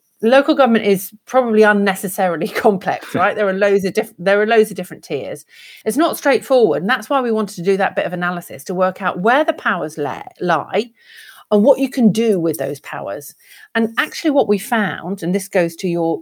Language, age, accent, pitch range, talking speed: English, 40-59, British, 175-235 Hz, 215 wpm